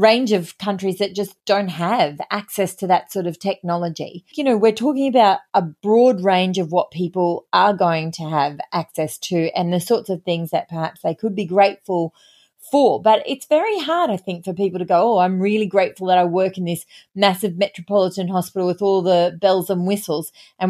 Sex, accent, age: female, Australian, 30-49